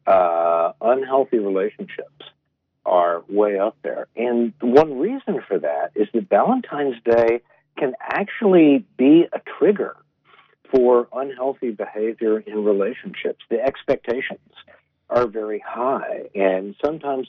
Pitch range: 100-145 Hz